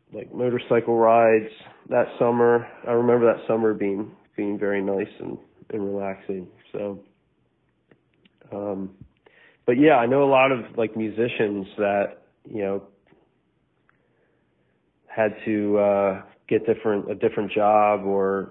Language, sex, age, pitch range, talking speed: English, male, 30-49, 95-105 Hz, 125 wpm